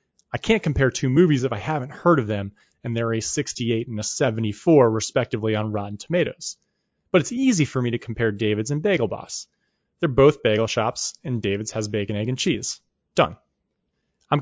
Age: 30-49